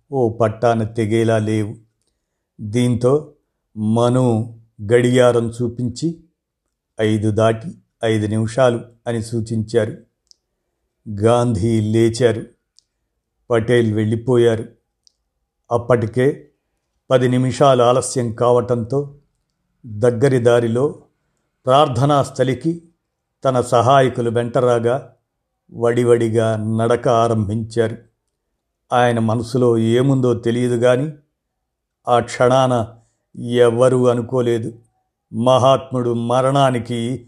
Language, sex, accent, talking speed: Telugu, male, native, 70 wpm